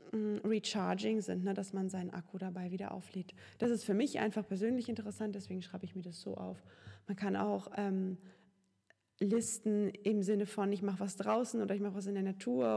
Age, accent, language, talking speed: 20-39, German, German, 200 wpm